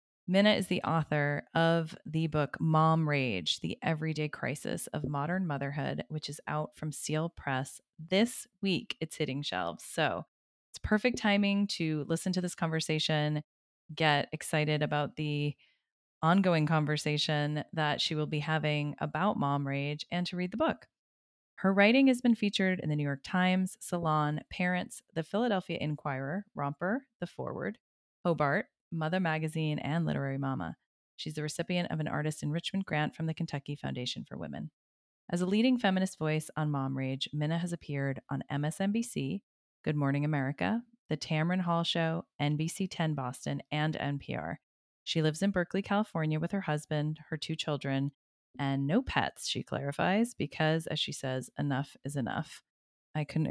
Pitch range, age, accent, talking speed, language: 145-180 Hz, 20-39, American, 160 wpm, English